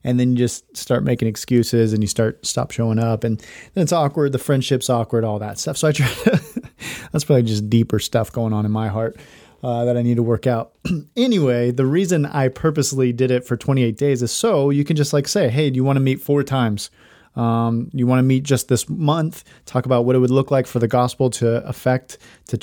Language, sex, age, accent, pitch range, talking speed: English, male, 30-49, American, 115-135 Hz, 240 wpm